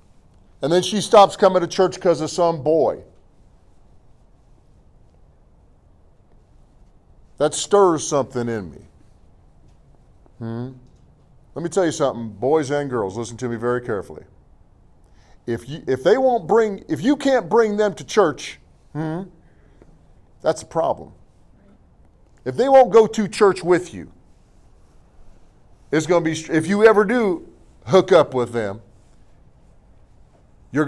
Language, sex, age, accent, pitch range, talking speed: English, male, 40-59, American, 105-170 Hz, 130 wpm